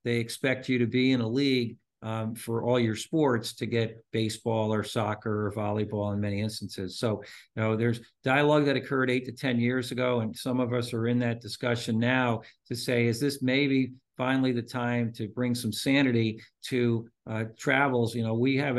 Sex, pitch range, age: male, 110-125 Hz, 50-69